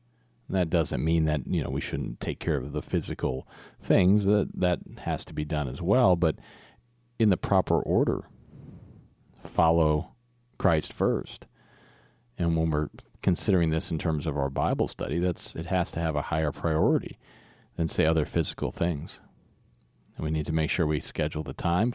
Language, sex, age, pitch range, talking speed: English, male, 40-59, 80-100 Hz, 180 wpm